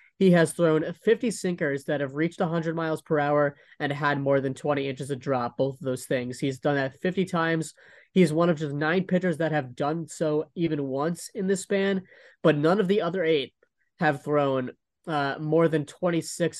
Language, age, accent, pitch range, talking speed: English, 20-39, American, 130-165 Hz, 205 wpm